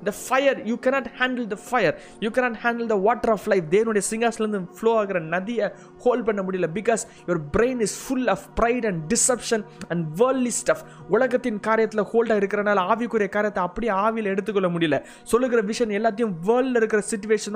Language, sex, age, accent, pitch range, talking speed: Tamil, male, 20-39, native, 200-245 Hz, 180 wpm